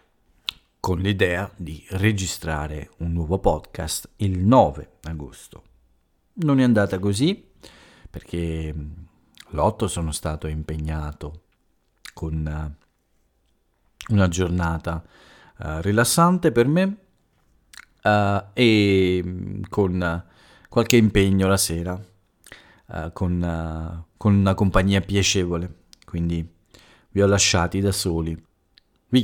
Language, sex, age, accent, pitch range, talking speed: Italian, male, 40-59, native, 80-100 Hz, 85 wpm